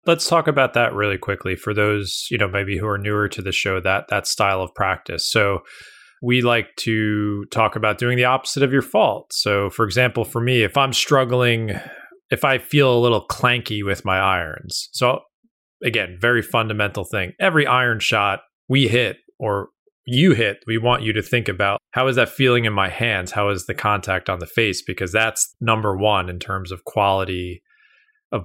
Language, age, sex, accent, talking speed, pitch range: English, 20-39, male, American, 195 wpm, 100-125 Hz